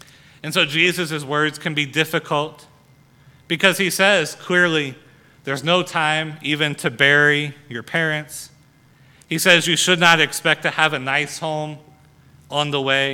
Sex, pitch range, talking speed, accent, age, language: male, 140-160 Hz, 150 wpm, American, 30-49, English